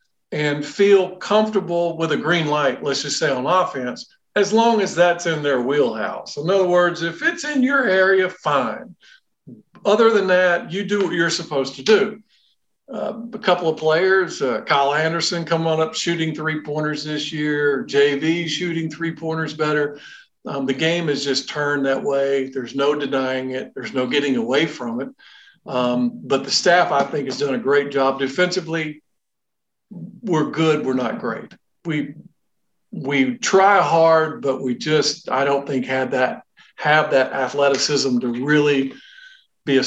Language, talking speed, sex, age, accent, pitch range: English, 165 wpm, male, 50-69, American, 135-175 Hz